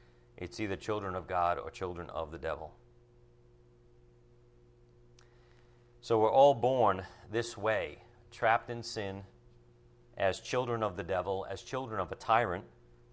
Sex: male